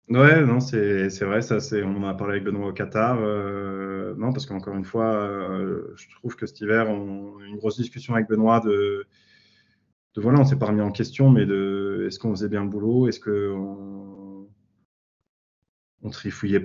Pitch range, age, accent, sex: 100-115 Hz, 20-39, French, male